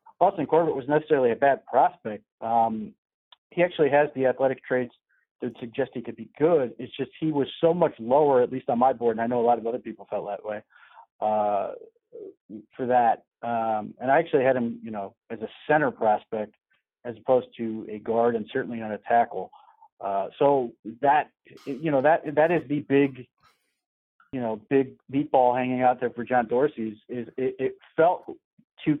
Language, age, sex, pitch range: English, 40-59, male, 115-140 Hz